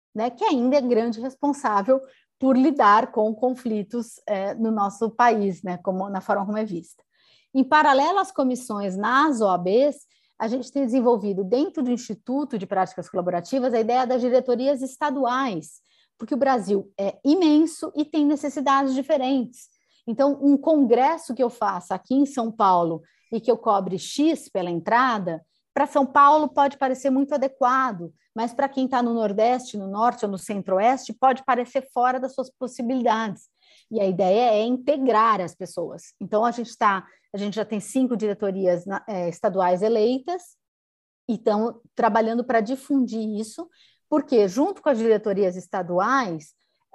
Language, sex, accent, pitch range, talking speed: Portuguese, female, Brazilian, 200-270 Hz, 155 wpm